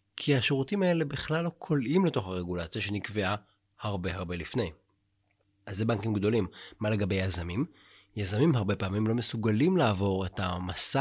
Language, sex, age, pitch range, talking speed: Hebrew, male, 30-49, 100-130 Hz, 145 wpm